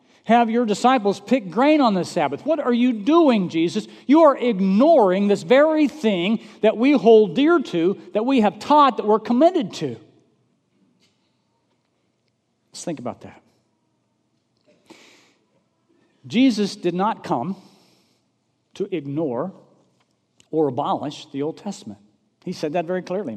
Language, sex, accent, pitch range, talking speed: English, male, American, 165-230 Hz, 135 wpm